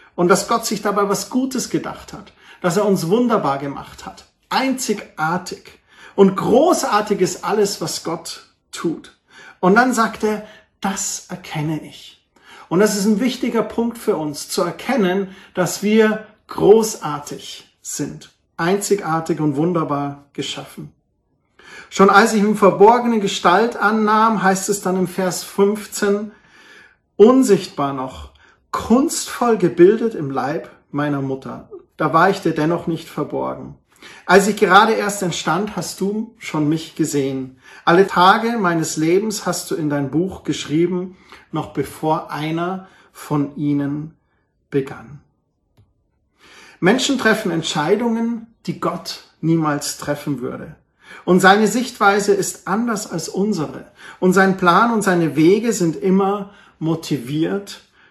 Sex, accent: male, German